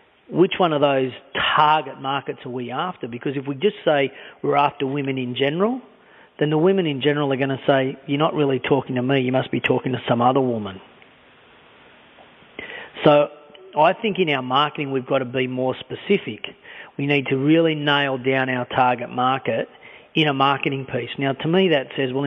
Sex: male